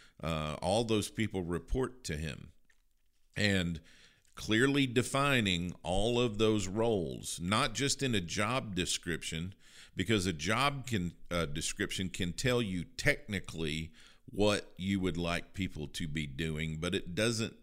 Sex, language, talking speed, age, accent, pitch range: male, English, 140 wpm, 50-69, American, 85-110 Hz